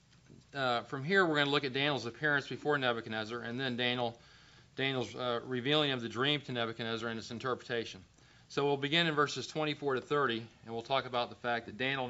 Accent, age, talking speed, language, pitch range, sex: American, 40-59, 210 wpm, English, 120-150 Hz, male